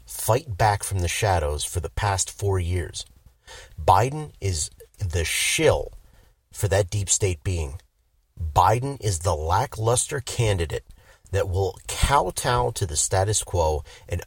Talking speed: 135 wpm